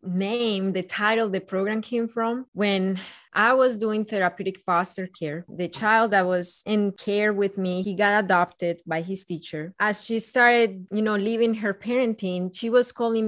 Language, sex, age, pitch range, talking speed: English, female, 20-39, 180-220 Hz, 175 wpm